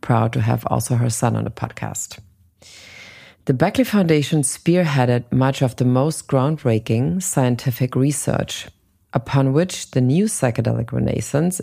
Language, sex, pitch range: English, female, 115-140 Hz